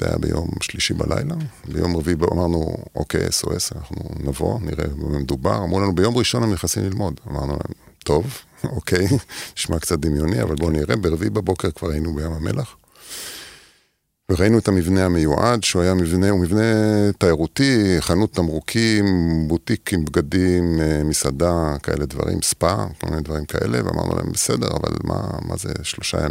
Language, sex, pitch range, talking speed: Hebrew, male, 80-95 Hz, 155 wpm